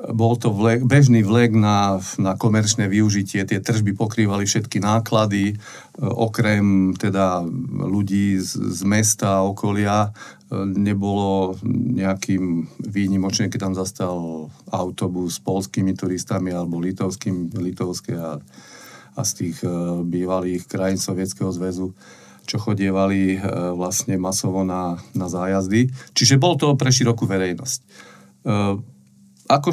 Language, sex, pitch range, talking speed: Slovak, male, 95-110 Hz, 115 wpm